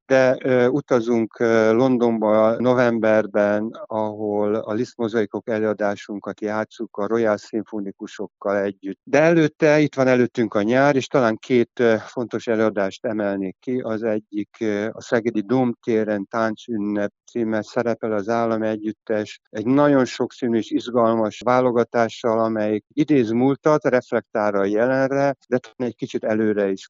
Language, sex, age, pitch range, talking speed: Hungarian, male, 50-69, 105-120 Hz, 130 wpm